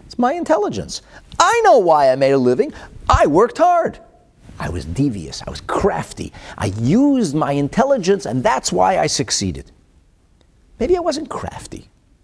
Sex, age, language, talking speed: male, 50-69, English, 155 wpm